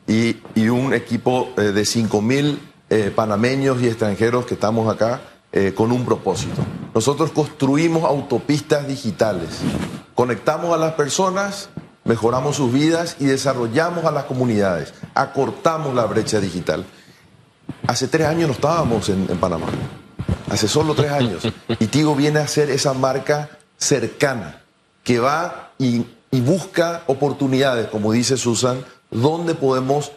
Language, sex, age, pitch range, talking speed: Spanish, male, 40-59, 120-155 Hz, 135 wpm